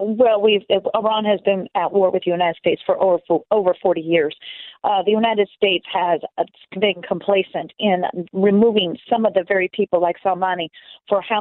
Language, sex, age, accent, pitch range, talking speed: English, female, 40-59, American, 190-230 Hz, 190 wpm